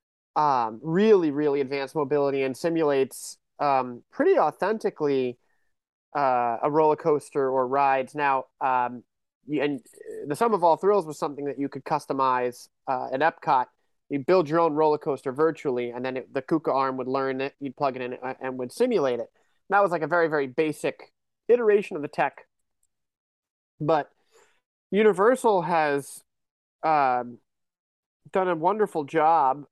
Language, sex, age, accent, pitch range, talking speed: English, male, 30-49, American, 130-165 Hz, 150 wpm